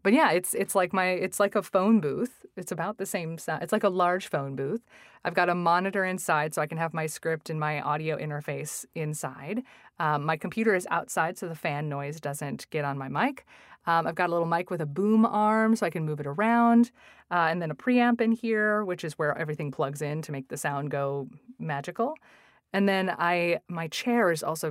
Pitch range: 155-190 Hz